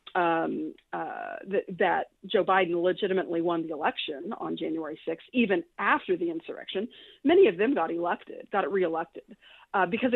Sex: female